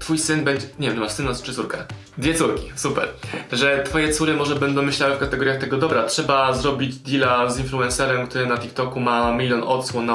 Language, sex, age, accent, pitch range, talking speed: Polish, male, 20-39, native, 120-140 Hz, 200 wpm